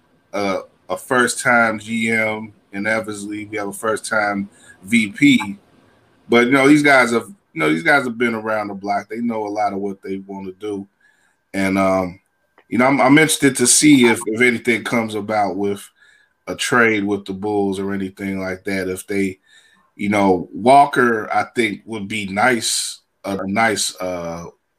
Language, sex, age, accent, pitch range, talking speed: English, male, 20-39, American, 95-115 Hz, 180 wpm